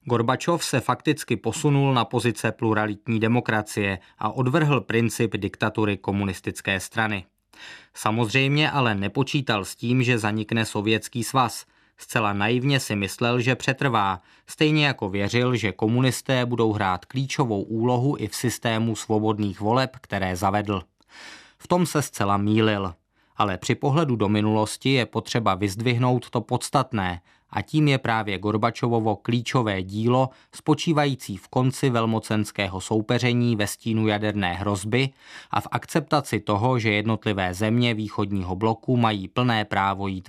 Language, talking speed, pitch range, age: Czech, 135 wpm, 105-130 Hz, 20-39